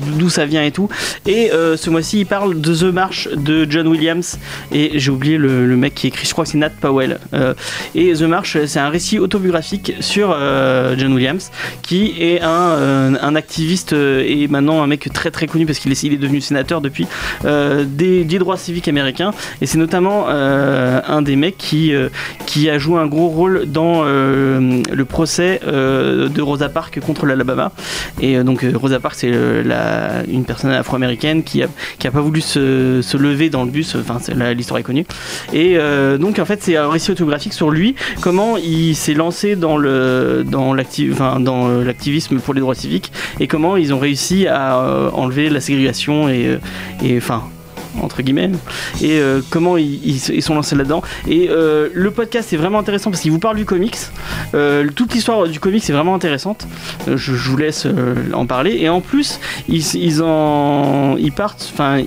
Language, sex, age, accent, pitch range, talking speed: French, male, 30-49, French, 135-170 Hz, 205 wpm